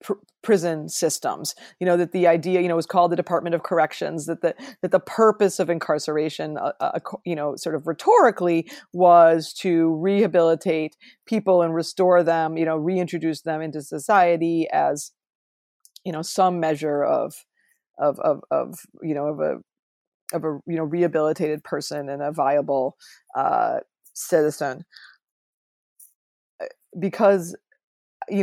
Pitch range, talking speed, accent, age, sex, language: 160-200 Hz, 145 wpm, American, 30-49, female, English